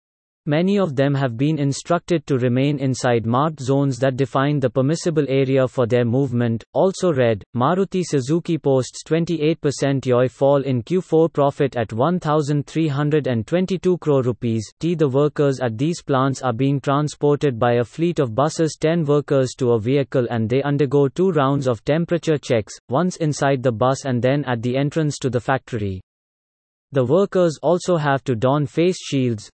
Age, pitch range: 30-49, 130-155 Hz